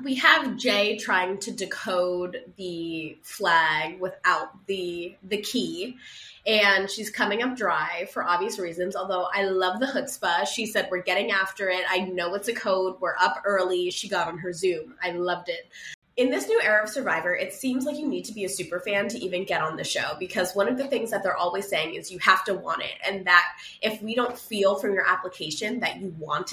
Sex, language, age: female, English, 20-39